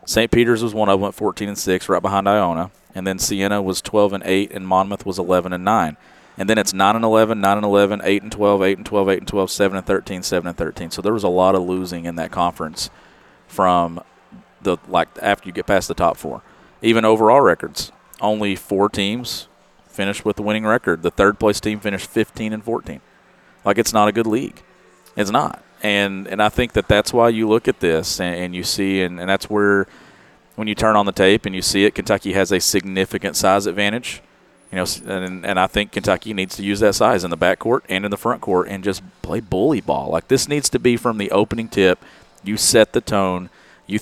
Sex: male